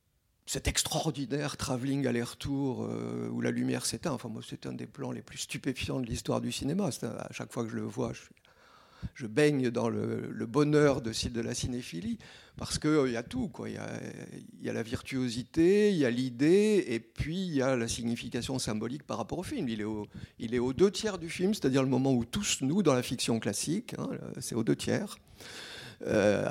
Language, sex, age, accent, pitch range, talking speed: French, male, 50-69, French, 115-145 Hz, 220 wpm